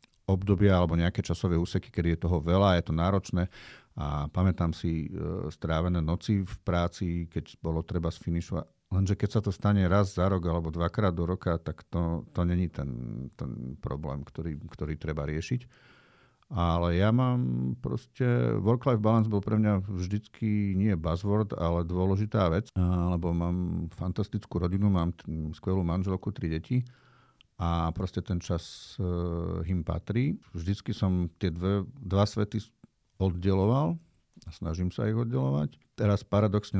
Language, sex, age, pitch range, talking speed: Slovak, male, 50-69, 85-105 Hz, 145 wpm